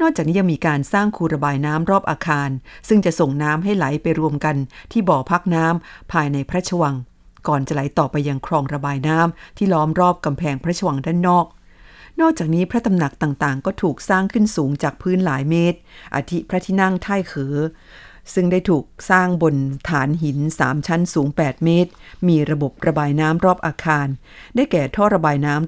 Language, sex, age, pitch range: Thai, female, 50-69, 150-185 Hz